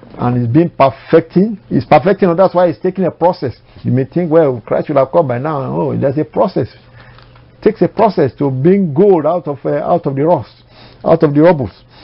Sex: male